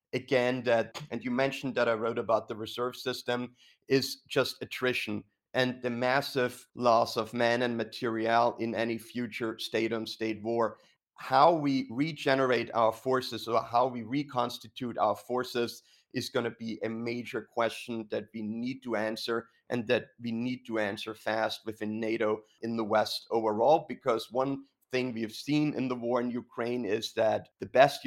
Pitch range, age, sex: 115-125 Hz, 30-49, male